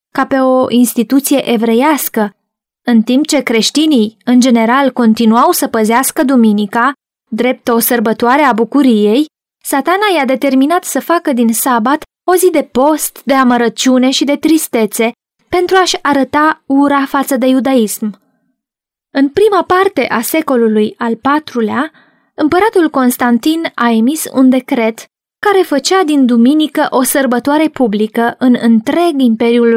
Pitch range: 235-285 Hz